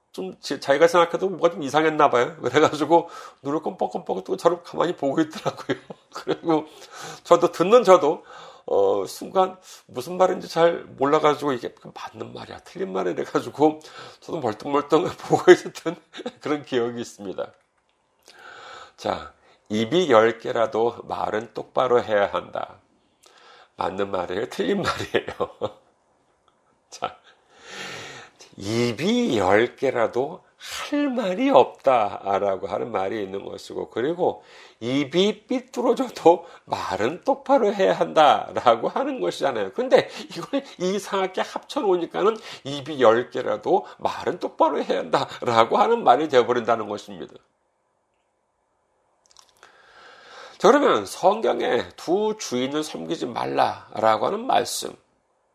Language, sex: Korean, male